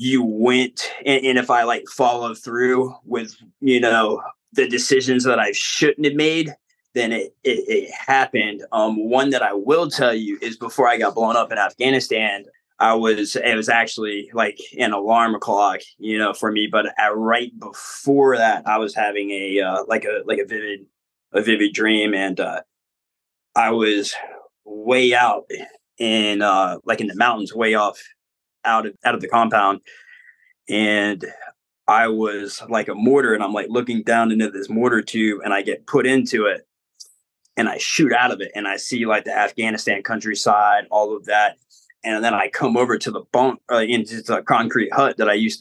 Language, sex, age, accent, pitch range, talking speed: English, male, 20-39, American, 105-130 Hz, 190 wpm